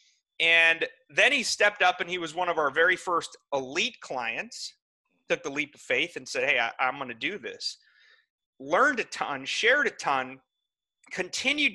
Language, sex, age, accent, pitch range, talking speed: English, male, 30-49, American, 165-250 Hz, 180 wpm